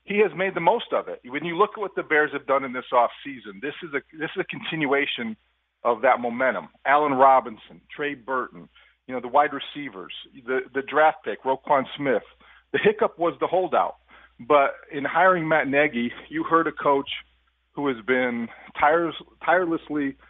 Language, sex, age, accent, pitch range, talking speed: English, male, 40-59, American, 125-165 Hz, 180 wpm